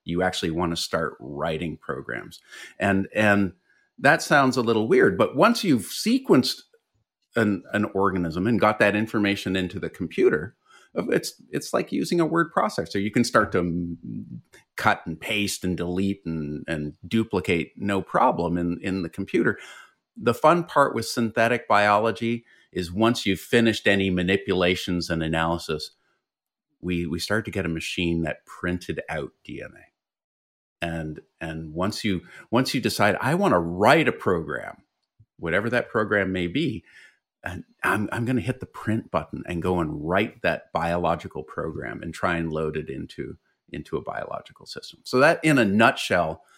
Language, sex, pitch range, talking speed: English, male, 85-110 Hz, 165 wpm